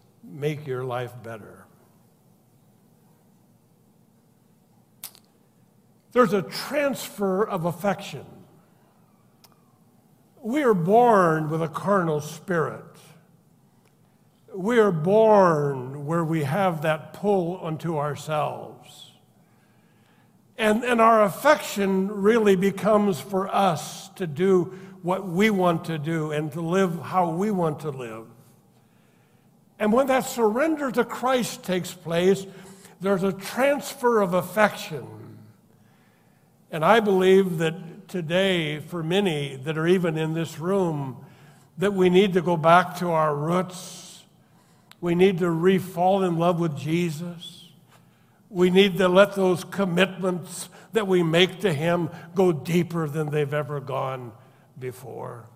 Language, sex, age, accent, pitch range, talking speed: English, male, 60-79, American, 155-195 Hz, 120 wpm